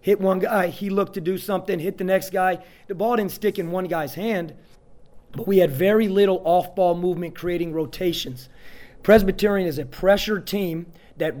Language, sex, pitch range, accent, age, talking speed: English, male, 170-195 Hz, American, 30-49, 185 wpm